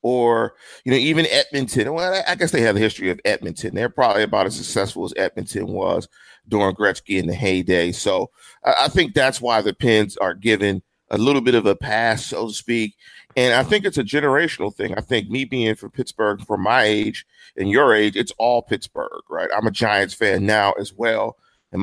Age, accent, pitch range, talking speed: 40-59, American, 110-135 Hz, 210 wpm